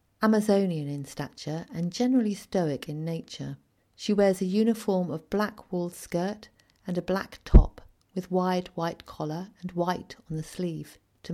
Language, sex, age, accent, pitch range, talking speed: English, female, 40-59, British, 150-190 Hz, 160 wpm